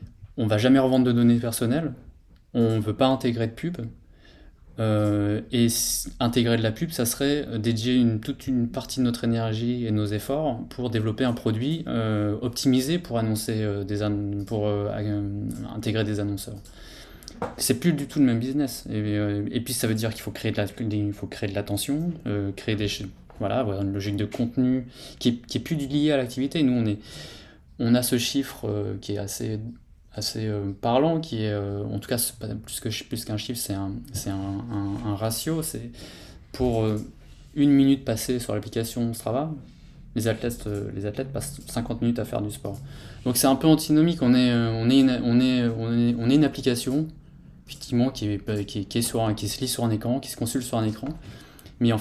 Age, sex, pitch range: 20-39, male, 105-130 Hz